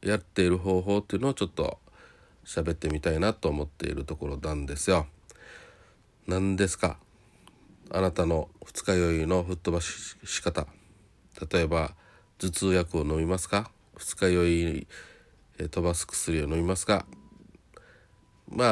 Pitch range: 85-110 Hz